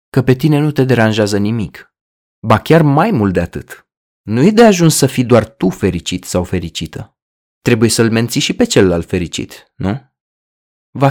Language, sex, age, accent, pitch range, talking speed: Romanian, male, 20-39, native, 95-150 Hz, 180 wpm